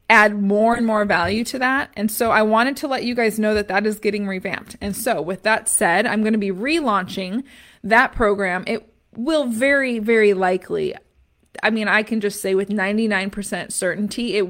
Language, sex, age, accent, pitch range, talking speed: English, female, 20-39, American, 195-235 Hz, 195 wpm